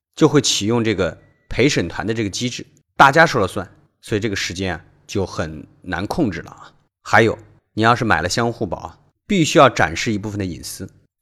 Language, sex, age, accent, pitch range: Chinese, male, 30-49, native, 100-150 Hz